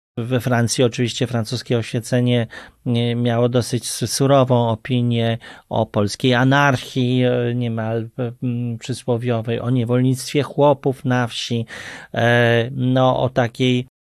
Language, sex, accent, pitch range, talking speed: Polish, male, native, 115-140 Hz, 95 wpm